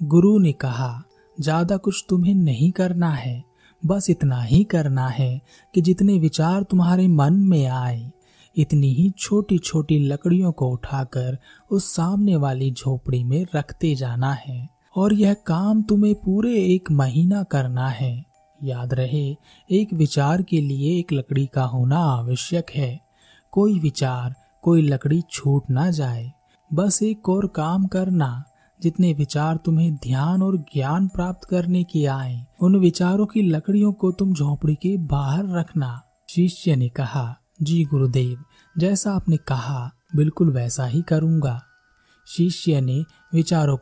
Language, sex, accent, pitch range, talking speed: Hindi, male, native, 135-180 Hz, 140 wpm